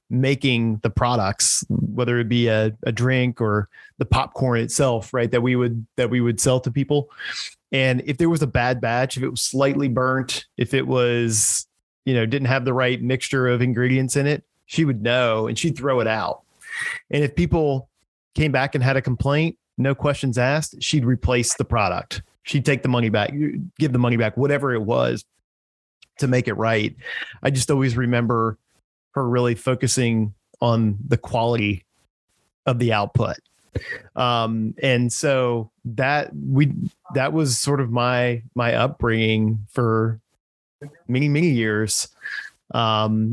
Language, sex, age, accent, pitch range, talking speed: English, male, 30-49, American, 115-135 Hz, 165 wpm